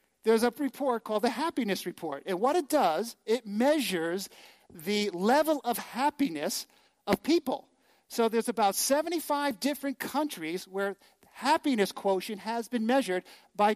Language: English